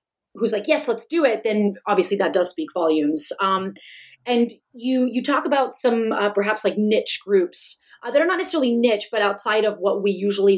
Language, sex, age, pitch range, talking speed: English, female, 30-49, 190-245 Hz, 205 wpm